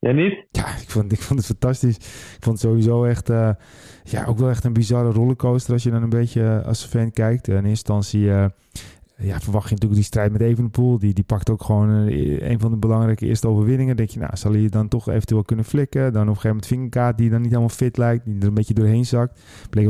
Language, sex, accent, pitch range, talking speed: Dutch, male, Dutch, 110-125 Hz, 250 wpm